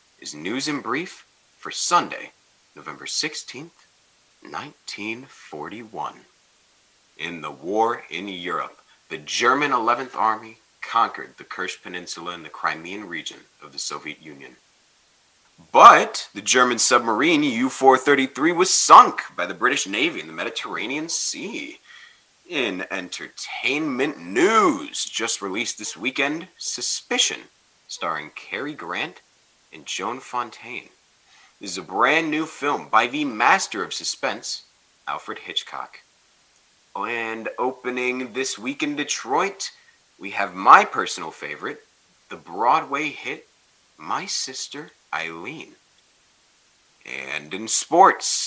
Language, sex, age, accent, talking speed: English, male, 30-49, American, 115 wpm